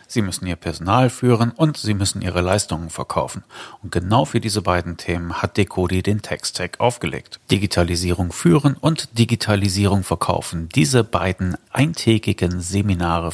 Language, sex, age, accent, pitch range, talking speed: German, male, 40-59, German, 90-115 Hz, 140 wpm